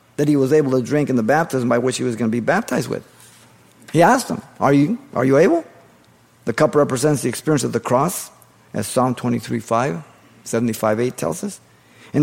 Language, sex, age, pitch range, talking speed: English, male, 50-69, 115-155 Hz, 210 wpm